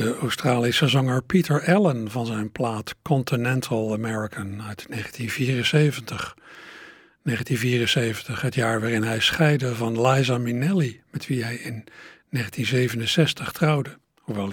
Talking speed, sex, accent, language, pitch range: 115 wpm, male, Dutch, Dutch, 115-155 Hz